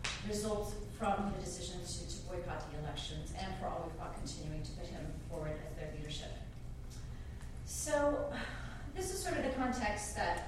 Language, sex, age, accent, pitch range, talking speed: English, female, 30-49, American, 185-250 Hz, 180 wpm